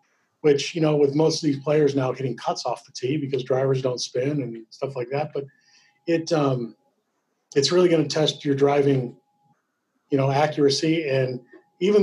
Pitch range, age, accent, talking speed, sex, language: 140-160 Hz, 40-59, American, 185 wpm, male, English